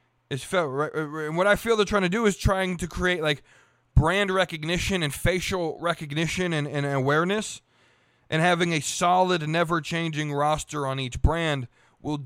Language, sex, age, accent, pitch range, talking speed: English, male, 20-39, American, 135-185 Hz, 165 wpm